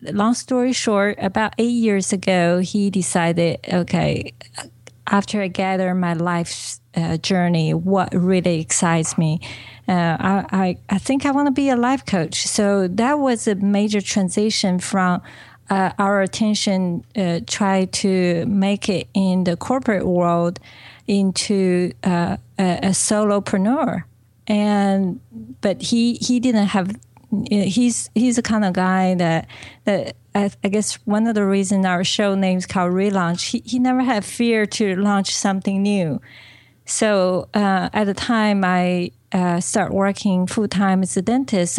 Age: 40-59